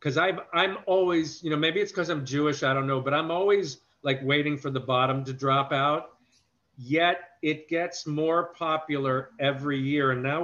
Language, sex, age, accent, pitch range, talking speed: English, male, 50-69, American, 125-160 Hz, 190 wpm